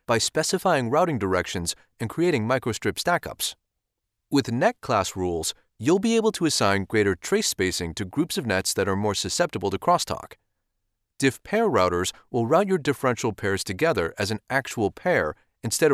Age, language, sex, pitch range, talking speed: 30-49, English, male, 100-155 Hz, 165 wpm